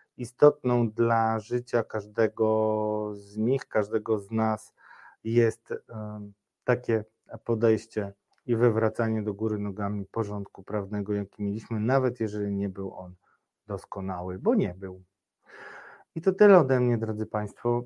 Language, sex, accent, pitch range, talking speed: Polish, male, native, 110-135 Hz, 125 wpm